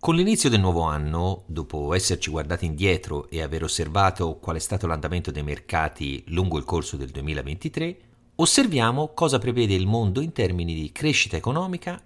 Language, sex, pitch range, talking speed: Italian, male, 85-135 Hz, 165 wpm